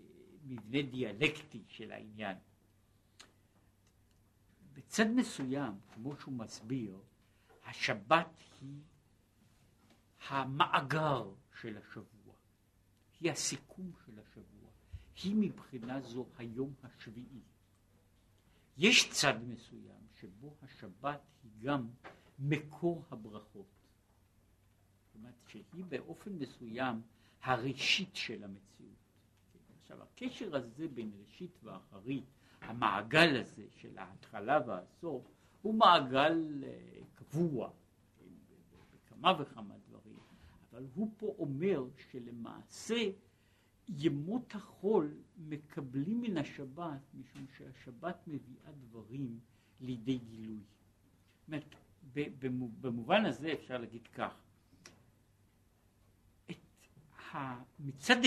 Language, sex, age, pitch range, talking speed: Hebrew, male, 60-79, 105-145 Hz, 85 wpm